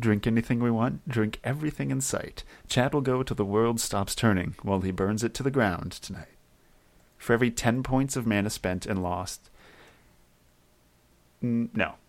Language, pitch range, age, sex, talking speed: English, 95-115 Hz, 30-49, male, 170 wpm